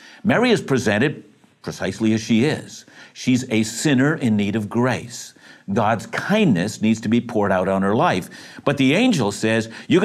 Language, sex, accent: English, male, American